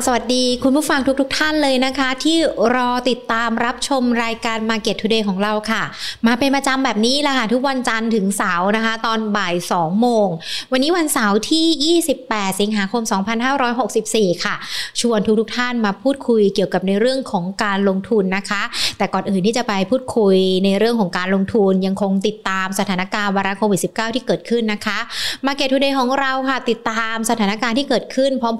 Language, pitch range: Thai, 205-255 Hz